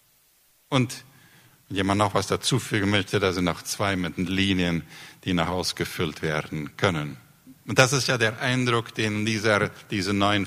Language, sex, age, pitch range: Spanish, male, 50-69, 95-125 Hz